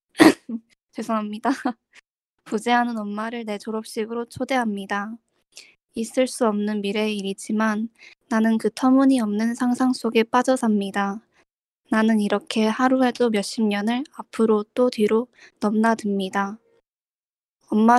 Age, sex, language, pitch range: 20-39, female, Korean, 215-250 Hz